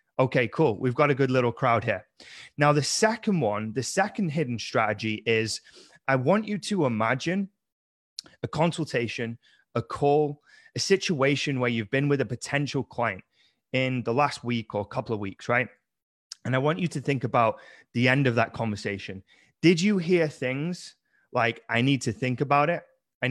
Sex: male